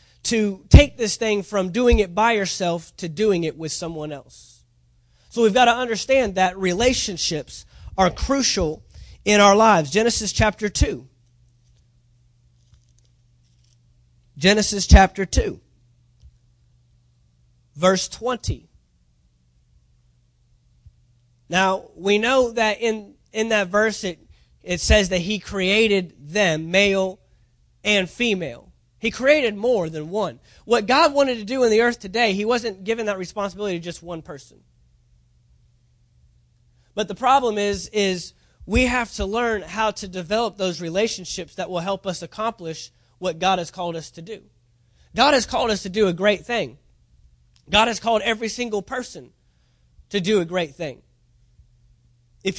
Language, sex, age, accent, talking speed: English, male, 30-49, American, 140 wpm